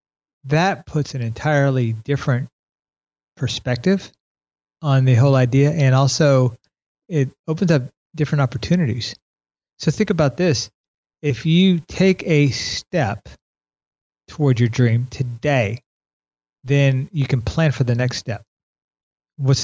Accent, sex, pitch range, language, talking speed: American, male, 110-140 Hz, English, 120 wpm